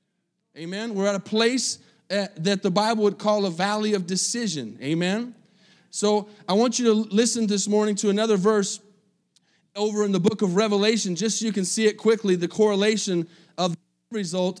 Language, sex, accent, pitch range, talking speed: English, male, American, 190-225 Hz, 190 wpm